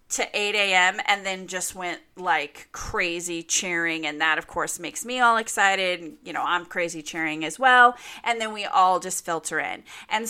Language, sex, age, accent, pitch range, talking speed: English, female, 30-49, American, 170-215 Hz, 190 wpm